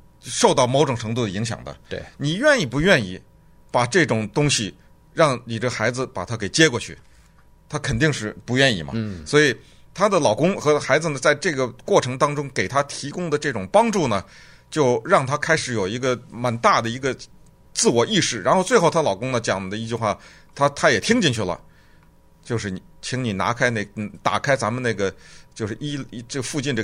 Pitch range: 115-160 Hz